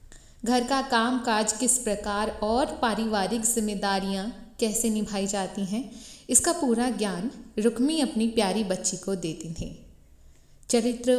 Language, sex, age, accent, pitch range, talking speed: Hindi, female, 20-39, native, 200-245 Hz, 130 wpm